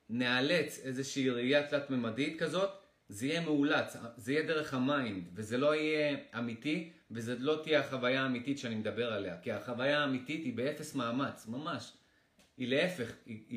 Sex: male